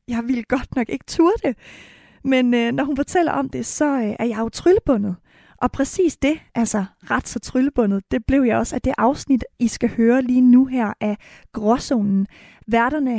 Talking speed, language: 195 wpm, Danish